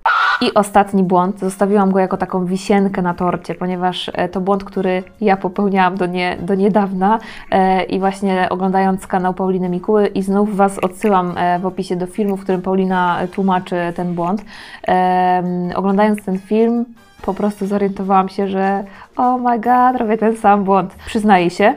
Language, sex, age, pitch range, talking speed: Polish, female, 20-39, 180-210 Hz, 155 wpm